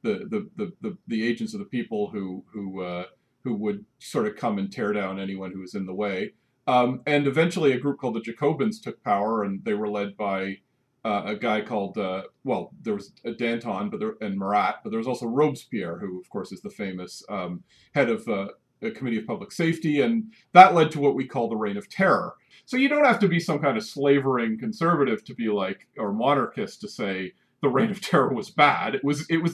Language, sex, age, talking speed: English, male, 40-59, 230 wpm